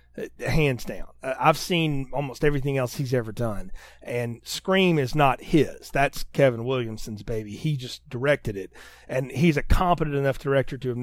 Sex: male